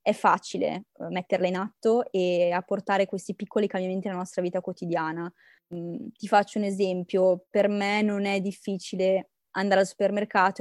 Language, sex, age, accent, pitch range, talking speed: Italian, female, 20-39, native, 195-230 Hz, 145 wpm